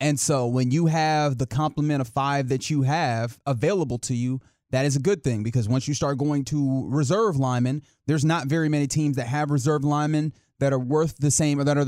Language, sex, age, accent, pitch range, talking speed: English, male, 30-49, American, 125-155 Hz, 225 wpm